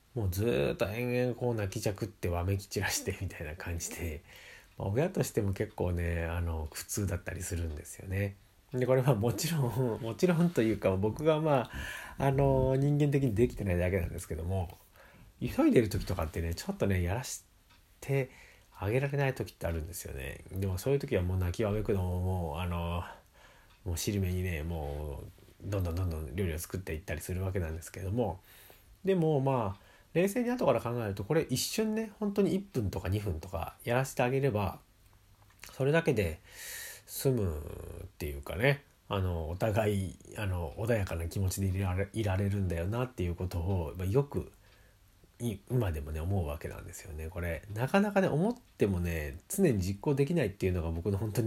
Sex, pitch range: male, 90-120 Hz